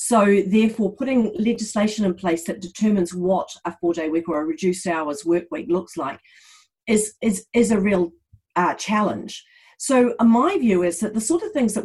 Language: English